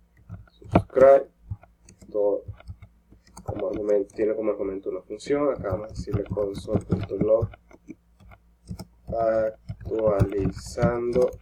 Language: English